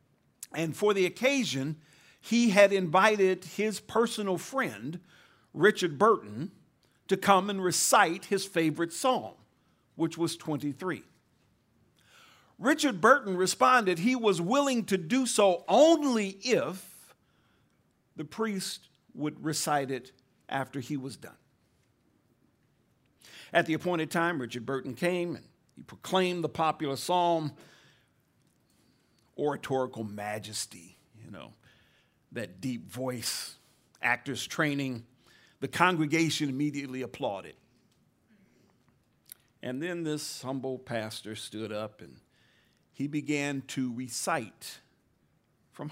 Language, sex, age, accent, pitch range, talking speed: English, male, 50-69, American, 130-185 Hz, 105 wpm